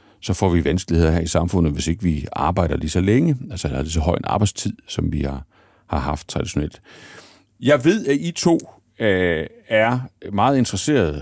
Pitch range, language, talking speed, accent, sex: 90-115 Hz, Danish, 180 wpm, native, male